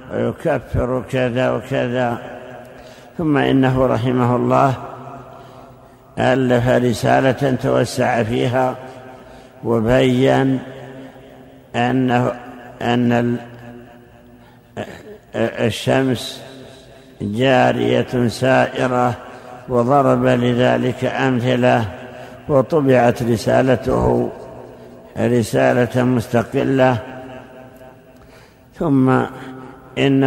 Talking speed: 50 wpm